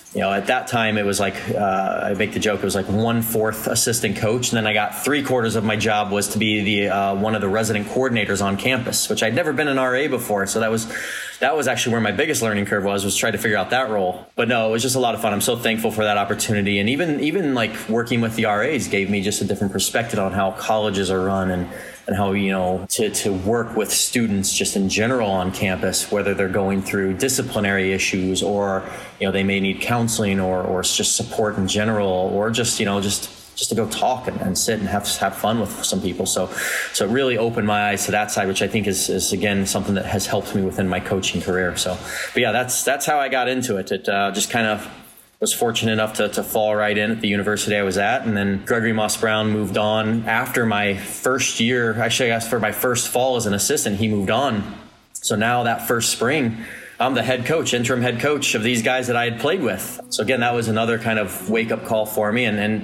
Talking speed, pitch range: 255 wpm, 100-115 Hz